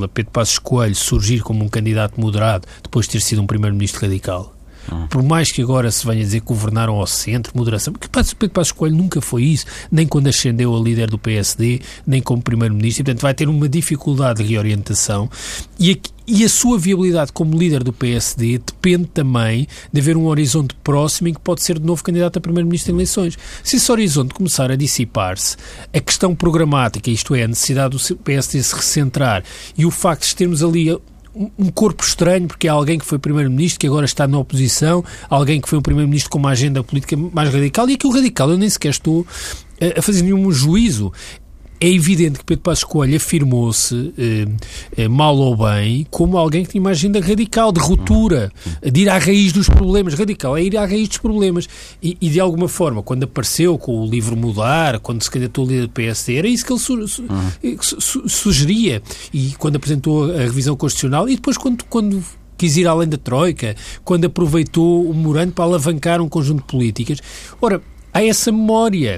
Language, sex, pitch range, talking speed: Portuguese, male, 120-175 Hz, 200 wpm